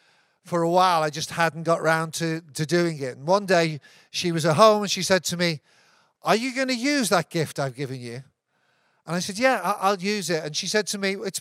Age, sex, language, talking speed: 50-69, male, English, 245 wpm